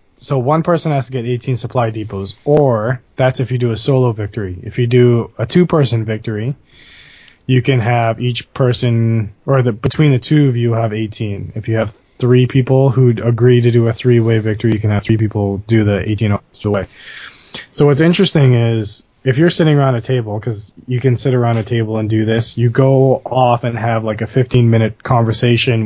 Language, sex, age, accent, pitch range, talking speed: English, male, 20-39, American, 110-130 Hz, 195 wpm